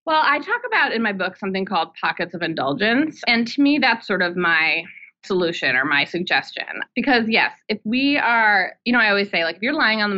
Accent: American